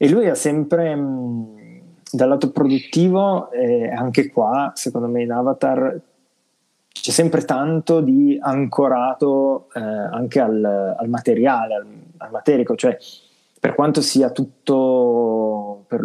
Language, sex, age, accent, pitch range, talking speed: Italian, male, 20-39, native, 115-160 Hz, 125 wpm